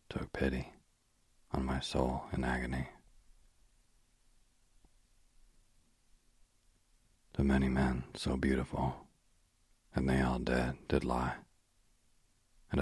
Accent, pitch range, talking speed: American, 65-75 Hz, 90 wpm